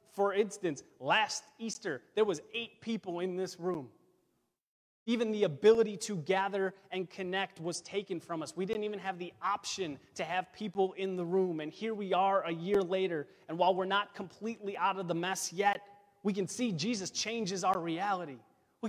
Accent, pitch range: American, 180-210 Hz